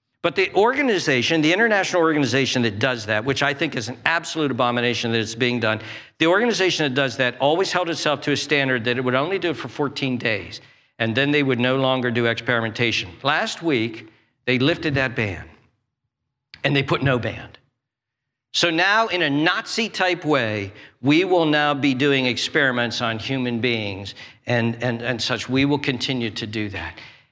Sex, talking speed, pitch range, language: male, 185 wpm, 120-170 Hz, English